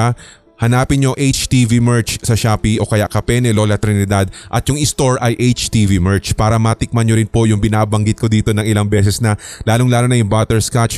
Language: Filipino